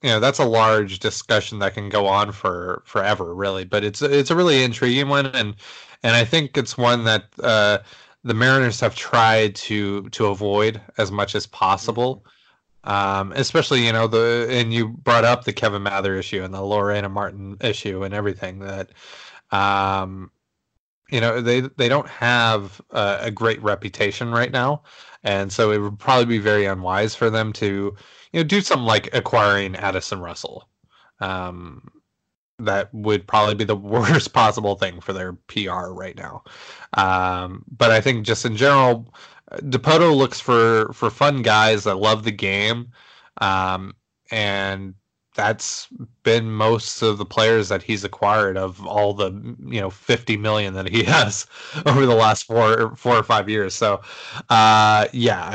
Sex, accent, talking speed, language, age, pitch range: male, American, 165 wpm, English, 20-39, 100-120 Hz